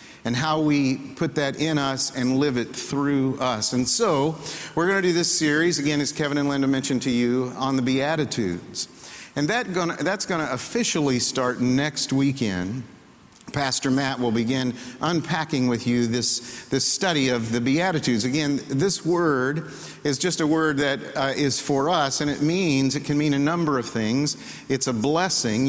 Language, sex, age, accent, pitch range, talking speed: English, male, 50-69, American, 120-150 Hz, 180 wpm